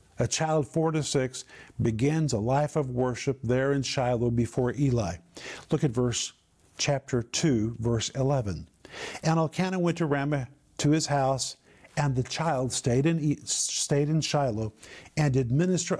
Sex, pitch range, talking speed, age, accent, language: male, 130-165 Hz, 155 wpm, 50-69, American, English